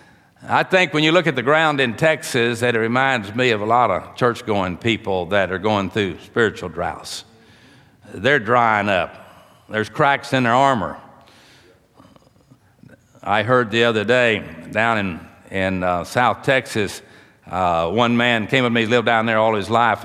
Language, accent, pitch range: English, American, 105-130 Hz